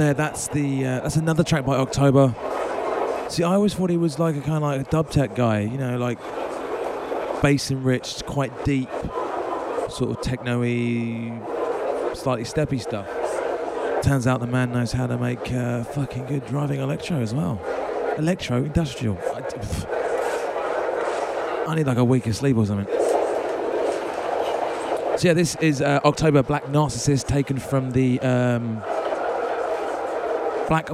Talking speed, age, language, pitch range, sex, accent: 150 wpm, 30-49, English, 120-150 Hz, male, British